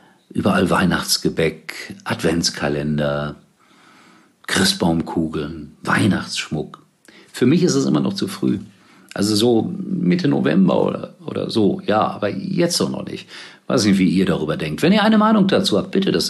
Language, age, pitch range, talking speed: German, 50-69, 95-150 Hz, 145 wpm